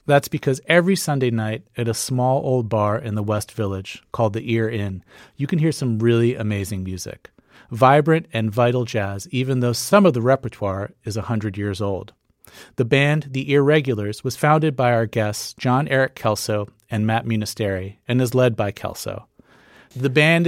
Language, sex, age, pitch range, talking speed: English, male, 40-59, 110-140 Hz, 180 wpm